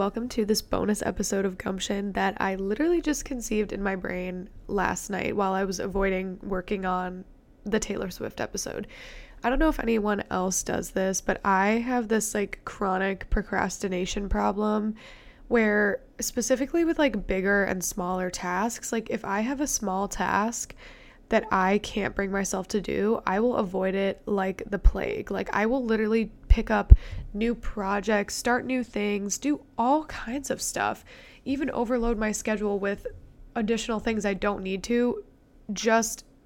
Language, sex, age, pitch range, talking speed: English, female, 20-39, 195-235 Hz, 165 wpm